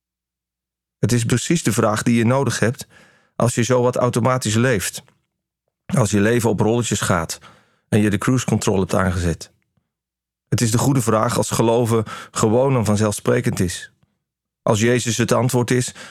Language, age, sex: Dutch, 40-59, male